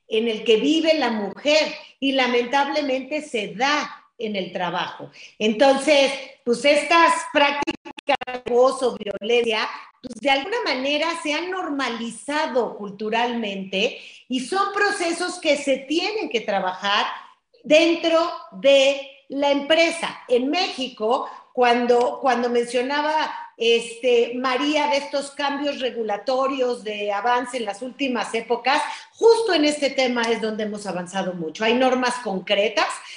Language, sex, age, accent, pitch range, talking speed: Spanish, female, 40-59, Mexican, 235-300 Hz, 125 wpm